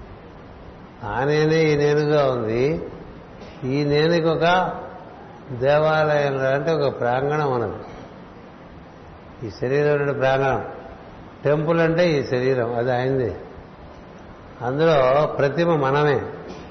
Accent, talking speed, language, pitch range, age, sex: native, 85 wpm, Telugu, 135-160 Hz, 60-79, male